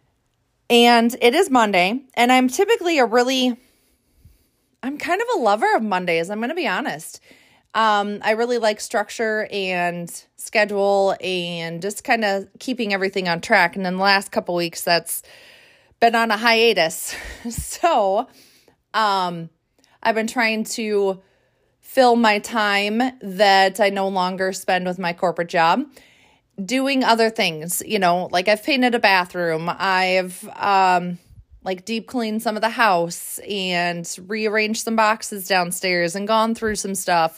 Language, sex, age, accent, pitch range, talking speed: English, female, 30-49, American, 180-230 Hz, 150 wpm